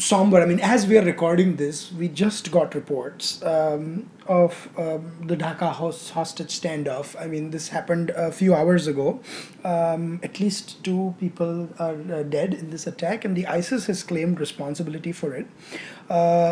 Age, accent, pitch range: 20-39, Indian, 165-195 Hz